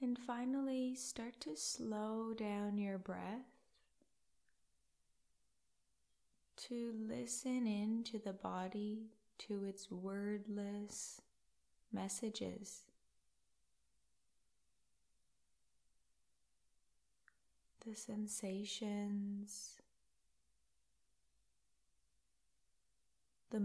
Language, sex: English, female